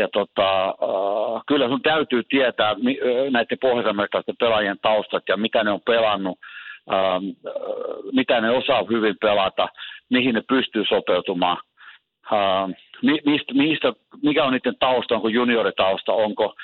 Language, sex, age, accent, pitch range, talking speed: Finnish, male, 60-79, native, 105-130 Hz, 110 wpm